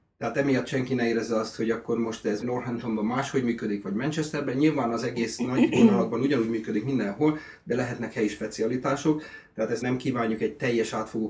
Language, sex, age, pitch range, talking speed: Hungarian, male, 30-49, 110-135 Hz, 180 wpm